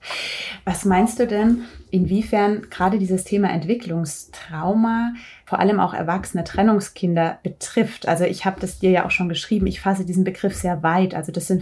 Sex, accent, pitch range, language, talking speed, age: female, German, 175-200 Hz, German, 170 wpm, 30-49